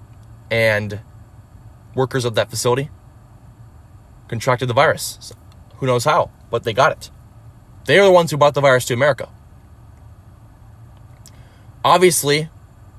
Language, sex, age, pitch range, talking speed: English, male, 20-39, 110-135 Hz, 120 wpm